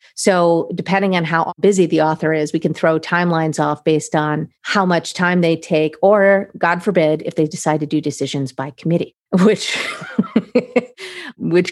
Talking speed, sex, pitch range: 170 wpm, female, 155-185 Hz